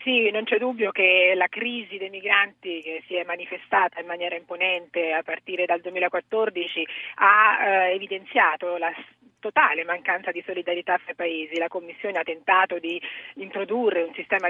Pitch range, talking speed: 175-200 Hz, 155 wpm